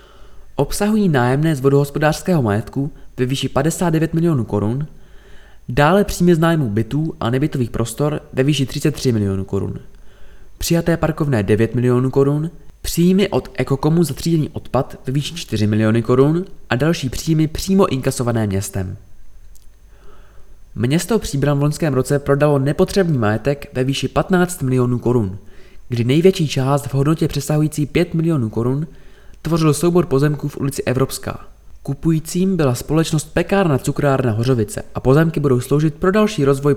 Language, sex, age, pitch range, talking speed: Czech, male, 20-39, 120-160 Hz, 140 wpm